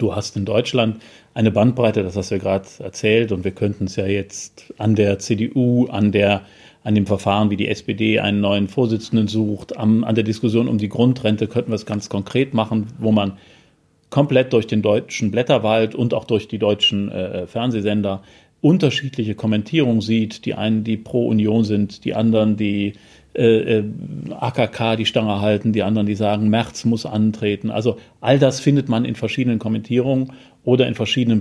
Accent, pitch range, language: German, 105-125 Hz, German